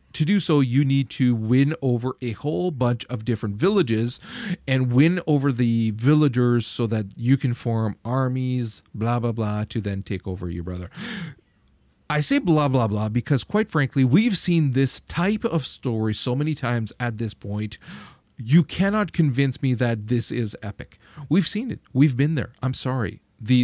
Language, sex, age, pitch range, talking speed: English, male, 40-59, 115-150 Hz, 180 wpm